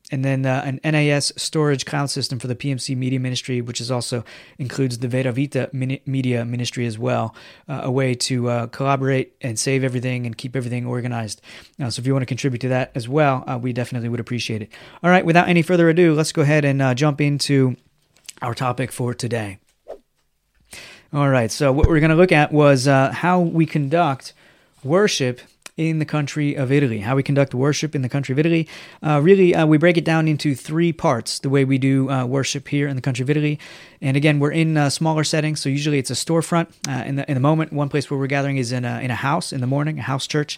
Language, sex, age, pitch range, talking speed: English, male, 30-49, 130-150 Hz, 230 wpm